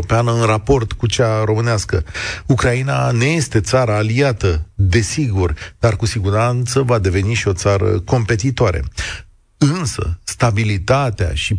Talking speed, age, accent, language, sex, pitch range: 120 wpm, 40-59, native, Romanian, male, 100-130 Hz